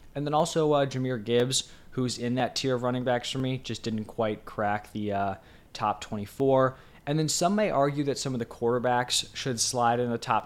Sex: male